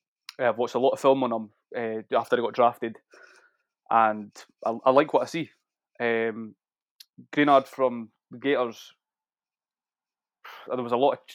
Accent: British